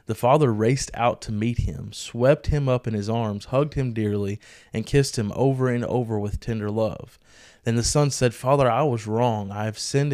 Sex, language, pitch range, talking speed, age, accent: male, English, 110-130 Hz, 215 wpm, 20-39, American